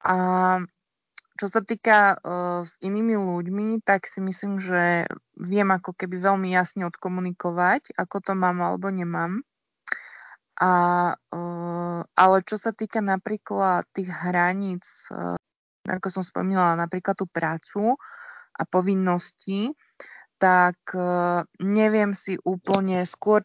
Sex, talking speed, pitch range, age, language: female, 105 wpm, 175-200 Hz, 20-39, Slovak